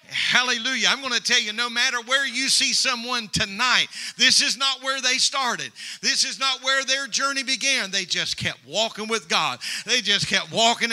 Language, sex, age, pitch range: English, male, 50-69, 170-225 Hz